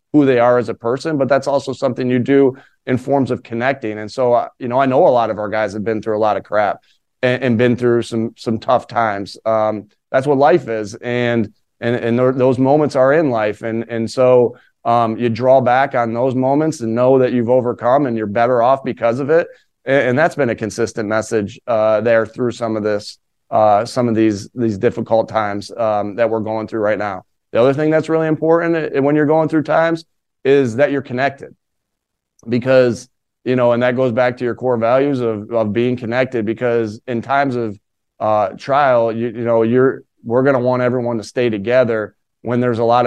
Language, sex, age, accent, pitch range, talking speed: English, male, 30-49, American, 115-130 Hz, 220 wpm